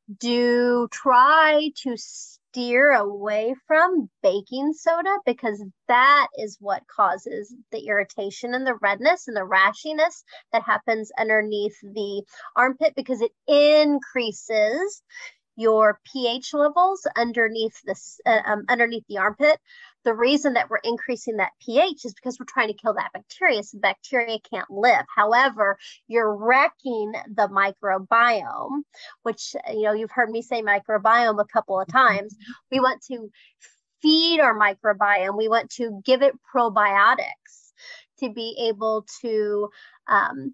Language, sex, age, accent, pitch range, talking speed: English, female, 30-49, American, 210-265 Hz, 135 wpm